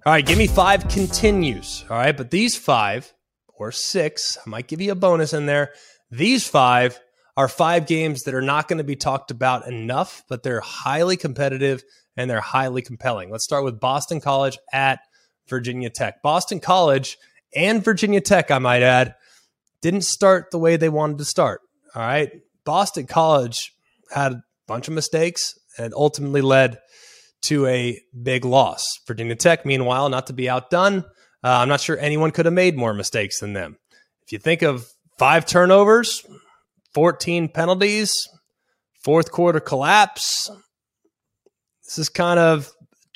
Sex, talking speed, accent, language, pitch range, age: male, 165 wpm, American, English, 130-175 Hz, 20-39